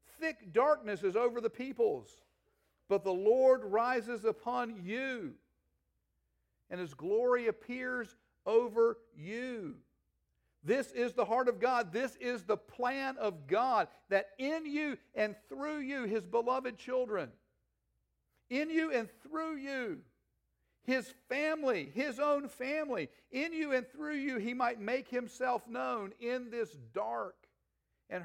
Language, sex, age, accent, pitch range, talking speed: English, male, 50-69, American, 210-270 Hz, 135 wpm